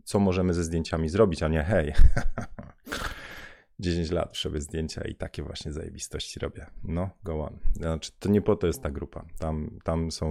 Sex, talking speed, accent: male, 185 wpm, native